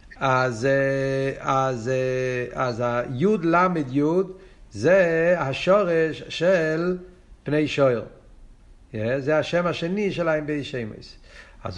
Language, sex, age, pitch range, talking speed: Hebrew, male, 50-69, 135-180 Hz, 85 wpm